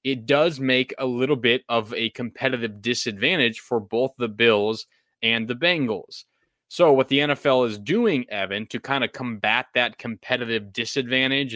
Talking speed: 160 wpm